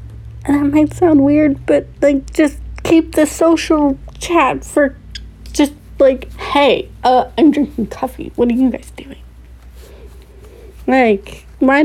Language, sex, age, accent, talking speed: English, female, 30-49, American, 130 wpm